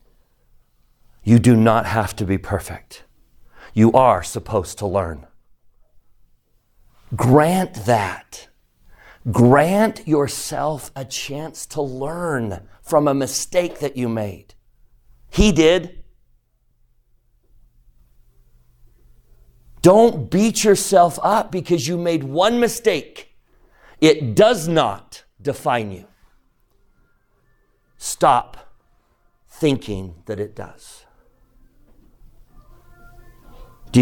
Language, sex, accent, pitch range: English, male, American, 110-135 Hz